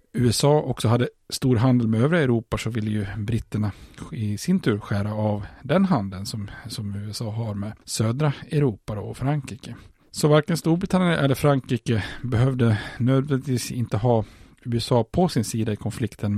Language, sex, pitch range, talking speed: Swedish, male, 110-130 Hz, 160 wpm